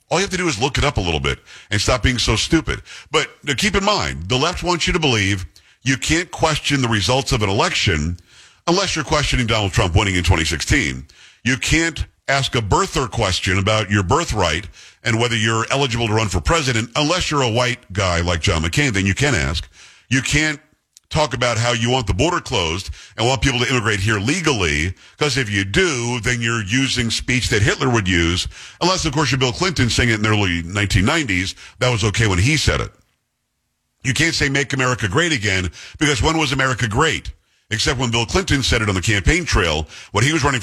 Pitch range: 100-135 Hz